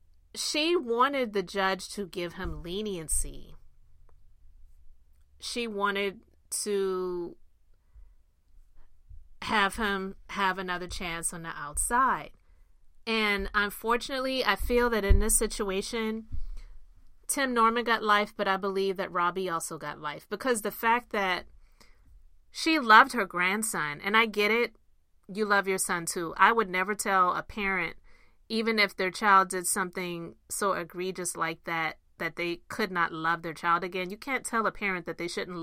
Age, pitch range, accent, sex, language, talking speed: 30-49, 160-210 Hz, American, female, English, 150 wpm